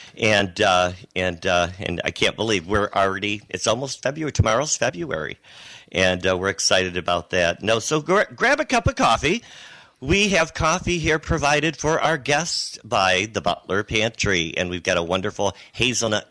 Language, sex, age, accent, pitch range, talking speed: English, male, 50-69, American, 95-125 Hz, 175 wpm